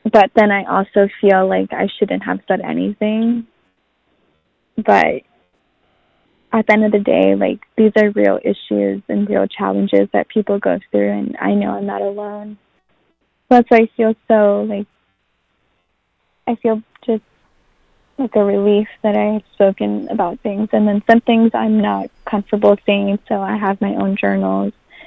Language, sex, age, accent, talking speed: English, female, 10-29, American, 160 wpm